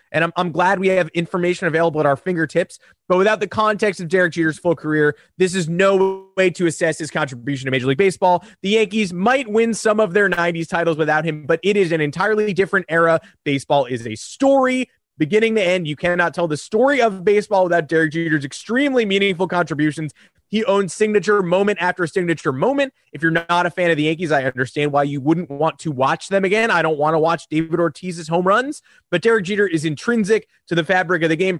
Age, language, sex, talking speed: 20-39, English, male, 220 wpm